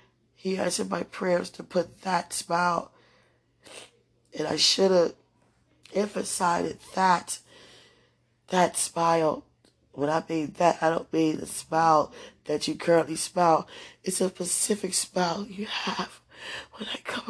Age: 20-39